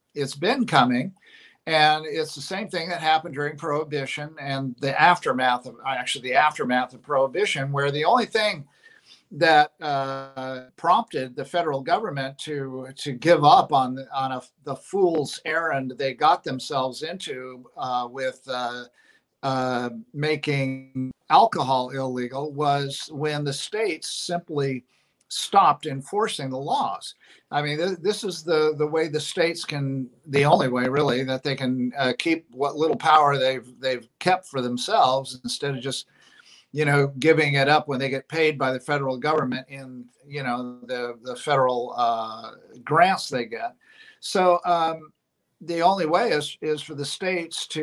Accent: American